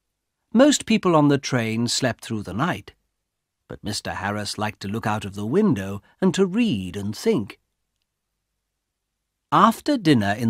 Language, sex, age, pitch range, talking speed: English, male, 60-79, 95-140 Hz, 155 wpm